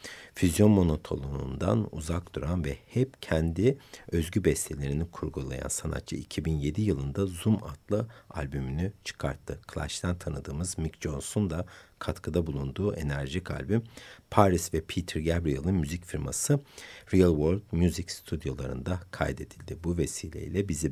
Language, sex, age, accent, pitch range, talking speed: Turkish, male, 60-79, native, 75-100 Hz, 115 wpm